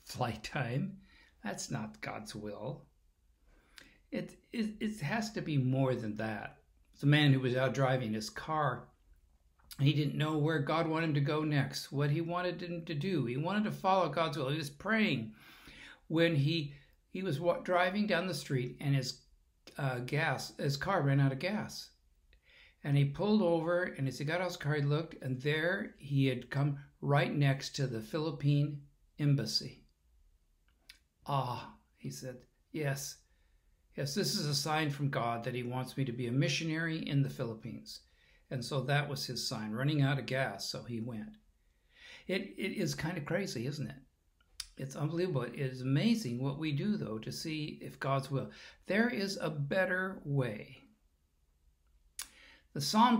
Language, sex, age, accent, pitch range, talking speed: English, male, 60-79, American, 125-160 Hz, 175 wpm